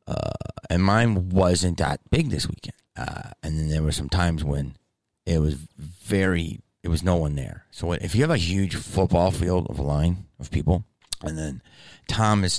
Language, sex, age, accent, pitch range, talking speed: English, male, 30-49, American, 75-100 Hz, 190 wpm